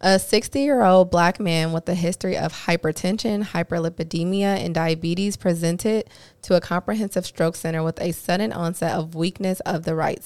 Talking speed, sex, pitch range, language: 160 wpm, female, 165-185 Hz, English